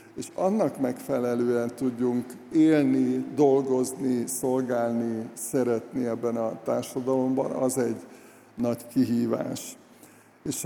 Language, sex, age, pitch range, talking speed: Hungarian, male, 60-79, 120-130 Hz, 90 wpm